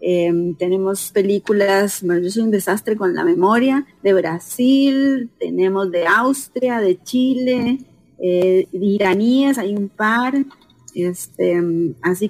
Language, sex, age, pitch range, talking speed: English, female, 30-49, 180-230 Hz, 120 wpm